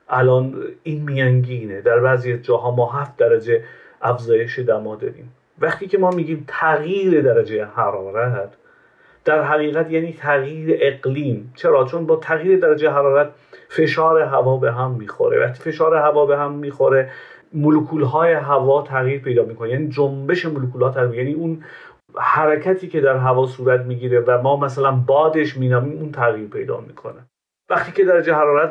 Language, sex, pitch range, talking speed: Persian, male, 130-170 Hz, 150 wpm